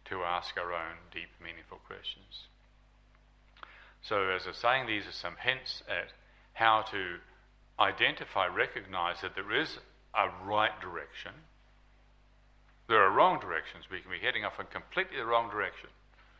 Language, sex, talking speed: English, male, 145 wpm